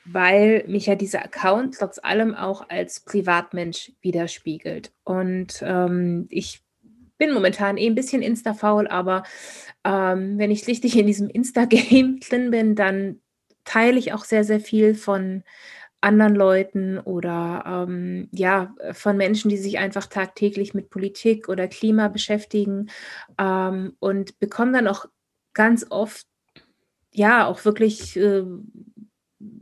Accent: German